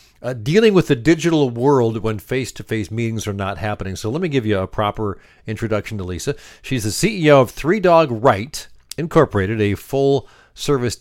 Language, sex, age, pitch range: English, male, 50-69, 110-145 Hz